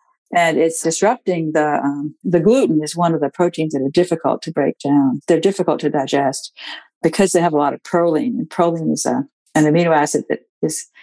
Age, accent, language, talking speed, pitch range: 60-79, American, English, 205 wpm, 150-175 Hz